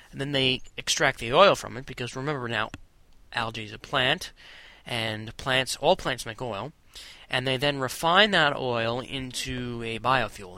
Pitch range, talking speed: 115-145 Hz, 170 wpm